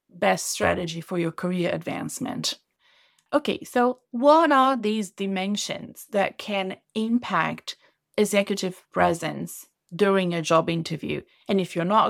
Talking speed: 125 wpm